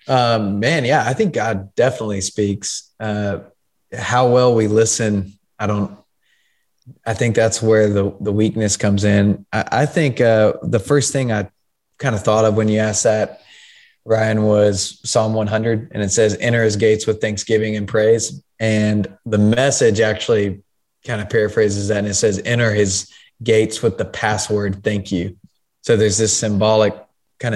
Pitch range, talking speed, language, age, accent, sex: 100-115 Hz, 170 wpm, English, 20-39, American, male